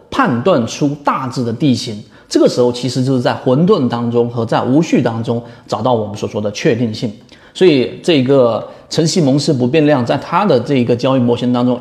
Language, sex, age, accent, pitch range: Chinese, male, 30-49, native, 120-160 Hz